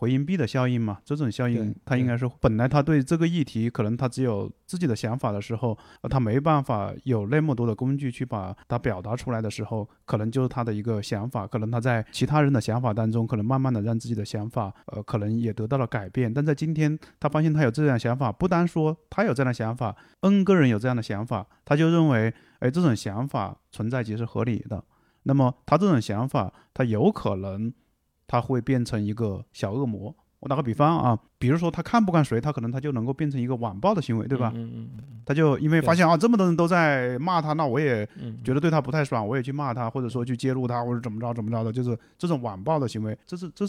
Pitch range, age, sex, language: 110-140 Hz, 20-39, male, Chinese